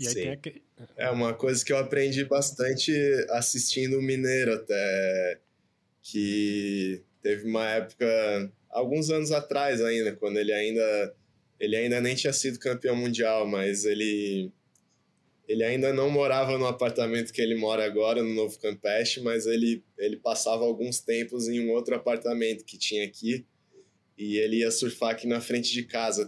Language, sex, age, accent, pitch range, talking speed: Portuguese, male, 20-39, Brazilian, 115-145 Hz, 155 wpm